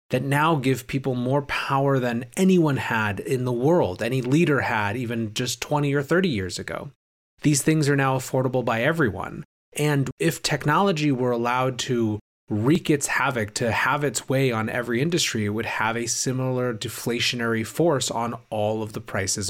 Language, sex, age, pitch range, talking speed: English, male, 30-49, 110-135 Hz, 175 wpm